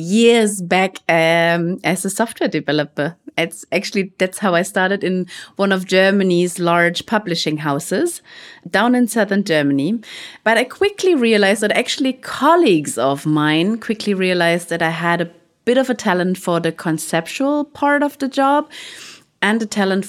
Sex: female